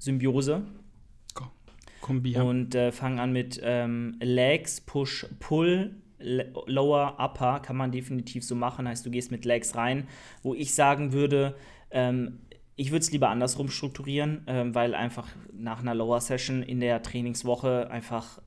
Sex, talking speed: male, 145 wpm